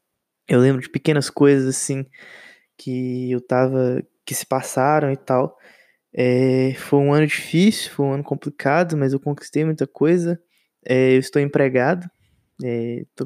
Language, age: Portuguese, 20-39